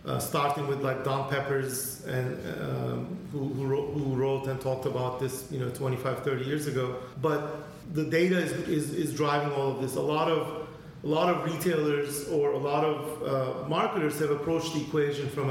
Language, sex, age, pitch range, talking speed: English, male, 40-59, 135-165 Hz, 195 wpm